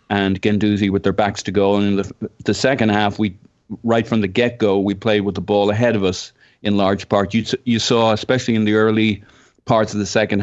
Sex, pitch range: male, 100-115 Hz